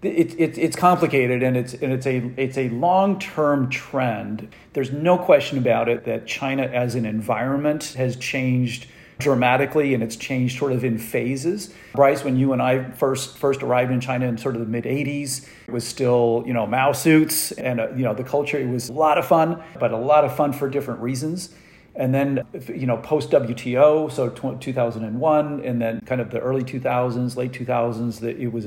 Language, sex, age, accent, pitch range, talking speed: English, male, 40-59, American, 120-145 Hz, 195 wpm